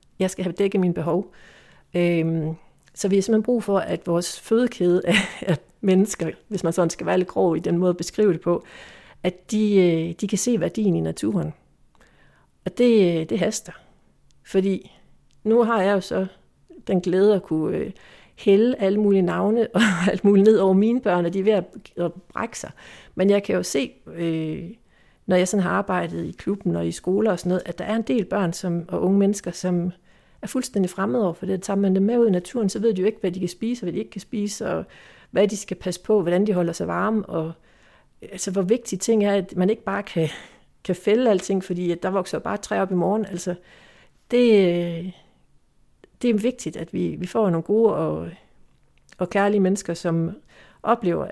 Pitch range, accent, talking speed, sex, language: 175-210 Hz, native, 205 wpm, female, Danish